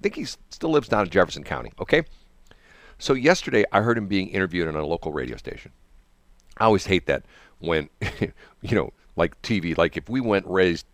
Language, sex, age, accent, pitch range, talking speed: English, male, 50-69, American, 80-105 Hz, 200 wpm